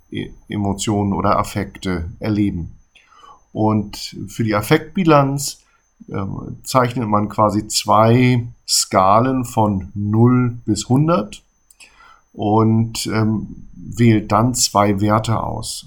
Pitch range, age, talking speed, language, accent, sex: 105-120 Hz, 50-69, 95 wpm, German, German, male